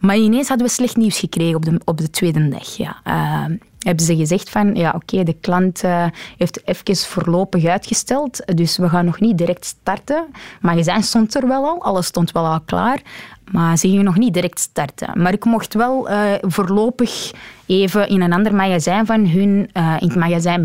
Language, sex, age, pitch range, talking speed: Dutch, female, 20-39, 170-210 Hz, 200 wpm